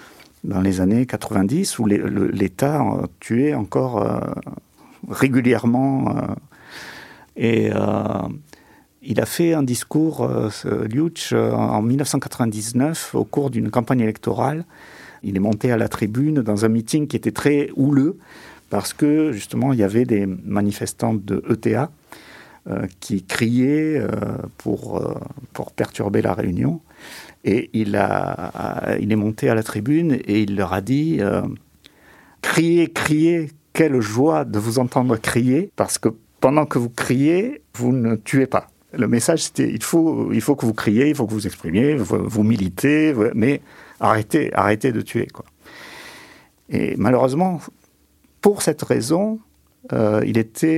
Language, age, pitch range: French, 50-69, 110-145 Hz